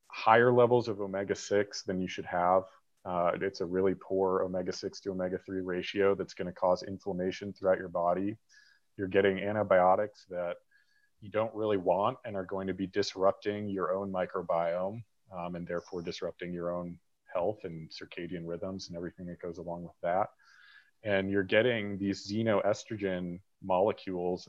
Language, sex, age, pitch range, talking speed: English, male, 30-49, 90-105 Hz, 155 wpm